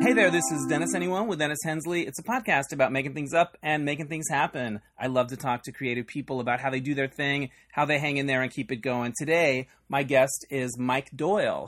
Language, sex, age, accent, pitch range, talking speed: English, male, 30-49, American, 125-155 Hz, 245 wpm